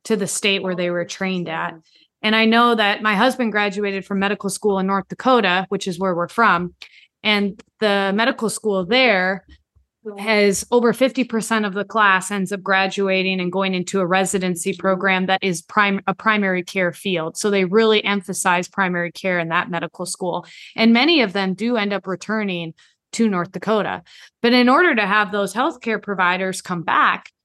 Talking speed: 180 wpm